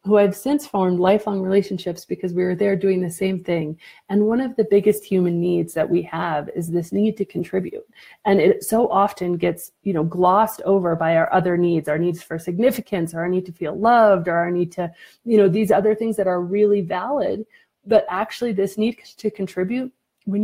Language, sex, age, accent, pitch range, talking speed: English, female, 30-49, American, 180-210 Hz, 210 wpm